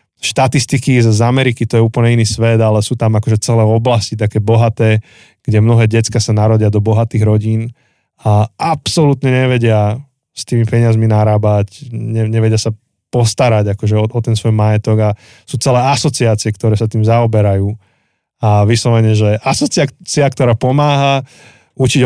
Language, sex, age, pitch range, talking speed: Slovak, male, 20-39, 110-130 Hz, 150 wpm